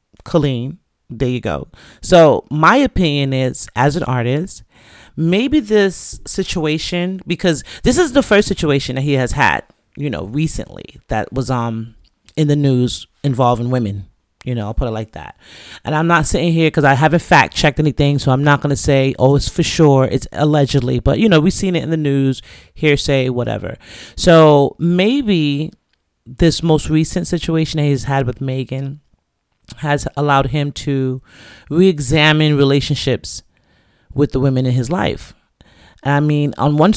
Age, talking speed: 30-49, 165 wpm